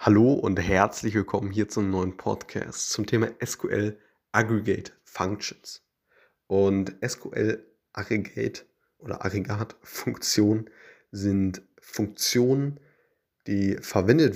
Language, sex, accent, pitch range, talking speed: German, male, German, 95-115 Hz, 95 wpm